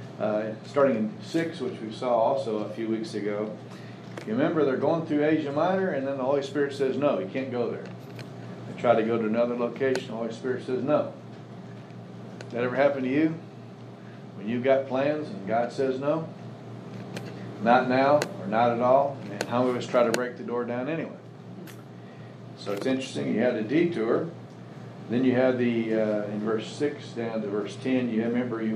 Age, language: 50-69, English